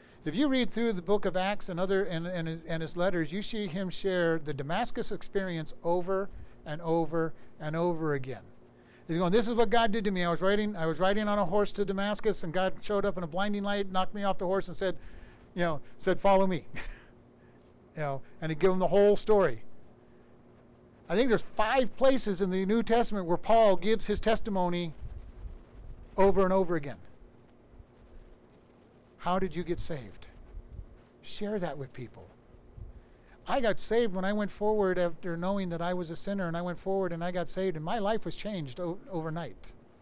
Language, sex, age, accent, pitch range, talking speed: English, male, 50-69, American, 155-200 Hz, 200 wpm